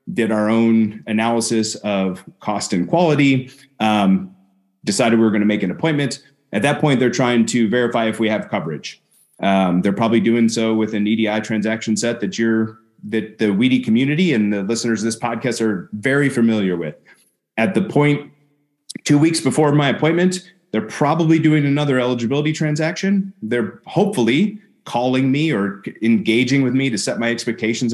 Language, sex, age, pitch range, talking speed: English, male, 30-49, 110-140 Hz, 170 wpm